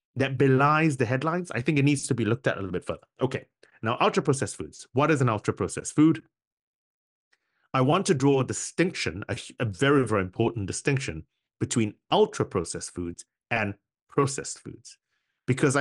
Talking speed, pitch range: 165 wpm, 110-145 Hz